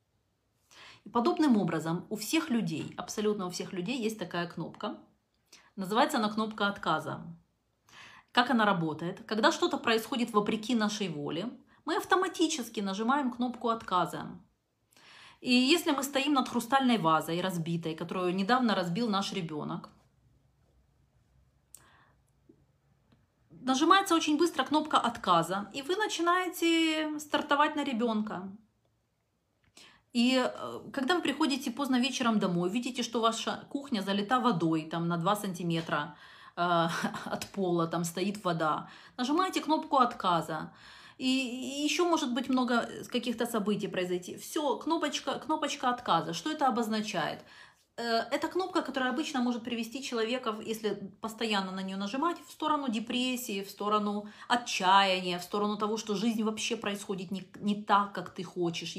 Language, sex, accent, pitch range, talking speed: Russian, female, native, 185-260 Hz, 125 wpm